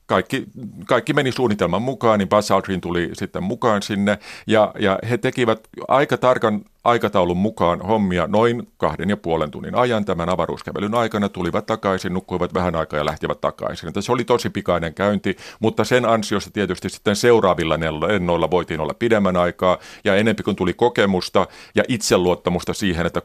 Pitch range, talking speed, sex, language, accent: 90-110 Hz, 160 wpm, male, Finnish, native